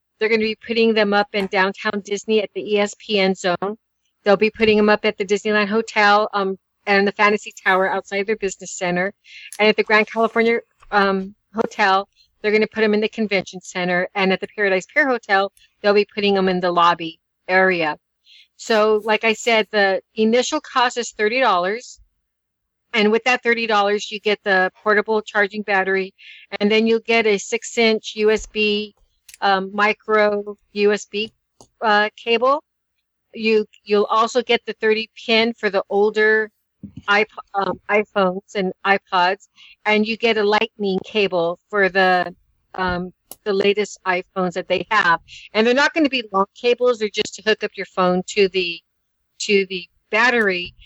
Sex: female